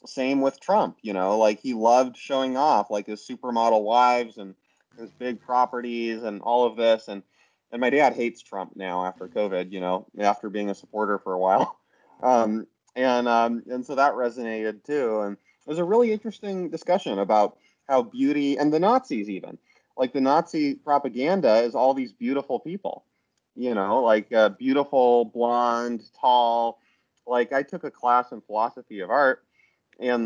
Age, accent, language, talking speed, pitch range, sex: 30-49, American, English, 175 wpm, 110-130 Hz, male